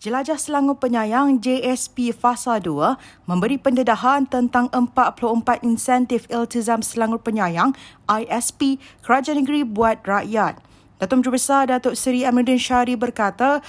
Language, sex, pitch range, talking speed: Malay, female, 230-275 Hz, 120 wpm